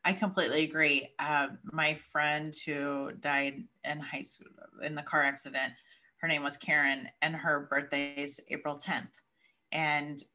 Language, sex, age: English, female, 30-49